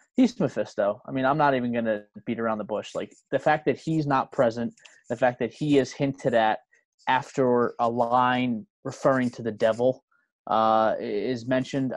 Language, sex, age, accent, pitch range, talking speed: English, male, 20-39, American, 115-140 Hz, 185 wpm